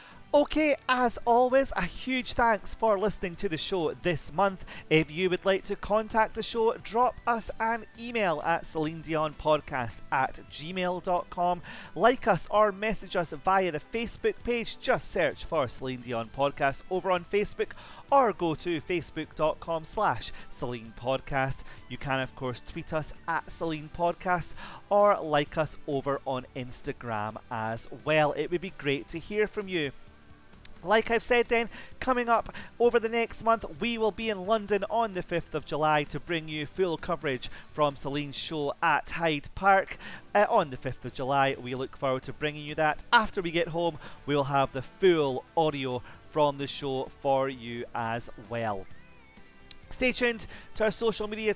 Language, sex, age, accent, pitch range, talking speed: English, male, 30-49, British, 135-205 Hz, 170 wpm